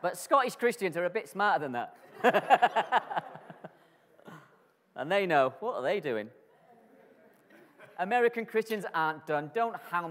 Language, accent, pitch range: English, British, 120-190 Hz